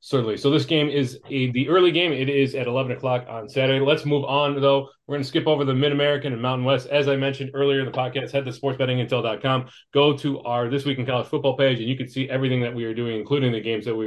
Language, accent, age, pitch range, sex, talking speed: English, American, 30-49, 125-145 Hz, male, 265 wpm